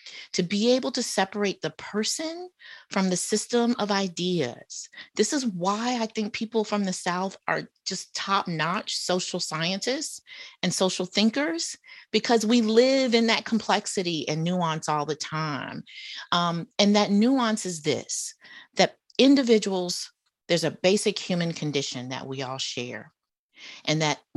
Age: 40-59